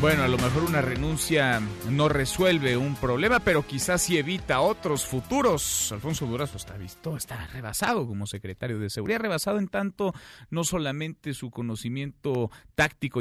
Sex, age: male, 40-59